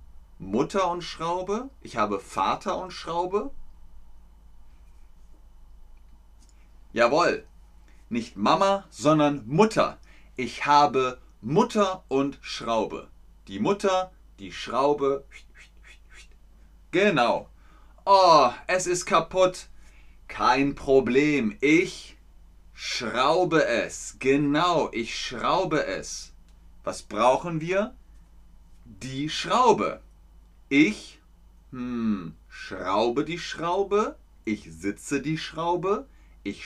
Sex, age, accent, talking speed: male, 30-49, German, 85 wpm